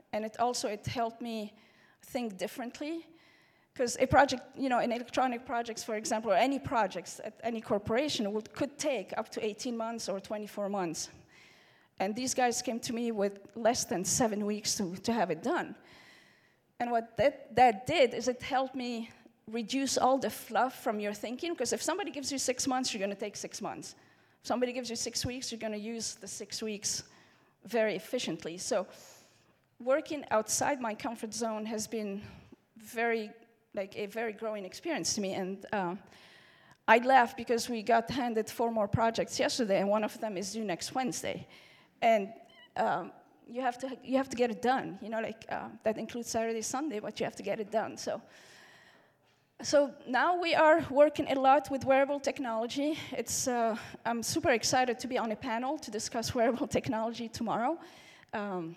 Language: English